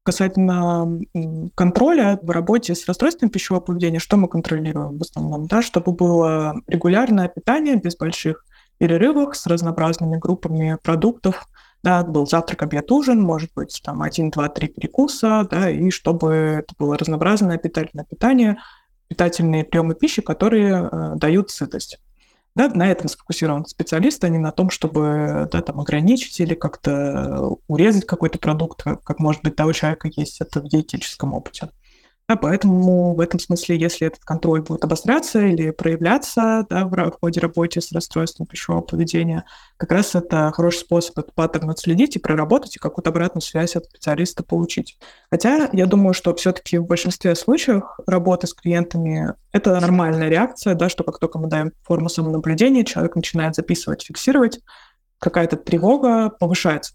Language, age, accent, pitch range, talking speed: Russian, 20-39, native, 160-185 Hz, 155 wpm